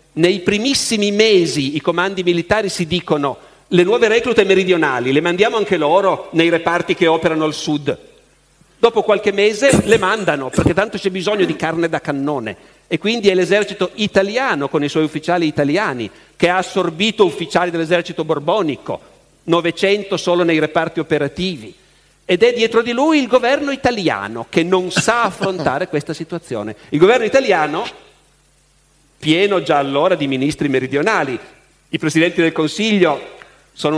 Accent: native